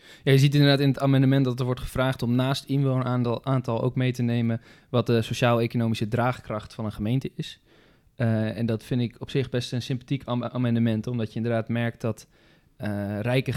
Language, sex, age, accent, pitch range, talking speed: Dutch, male, 20-39, Dutch, 110-130 Hz, 200 wpm